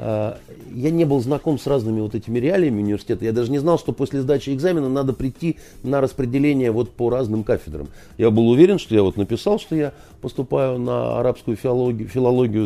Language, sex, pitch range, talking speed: Russian, male, 100-130 Hz, 185 wpm